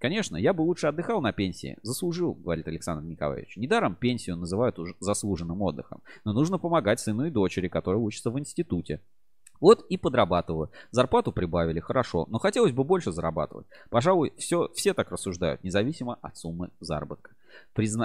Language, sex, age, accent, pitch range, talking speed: Russian, male, 20-39, native, 85-125 Hz, 155 wpm